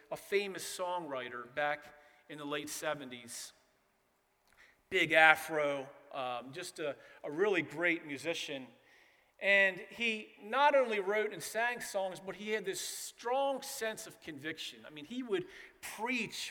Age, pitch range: 40-59, 185-255 Hz